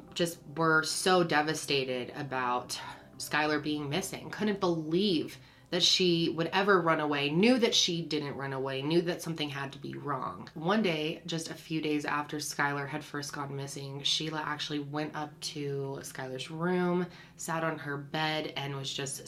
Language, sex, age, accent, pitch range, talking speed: English, female, 20-39, American, 140-170 Hz, 170 wpm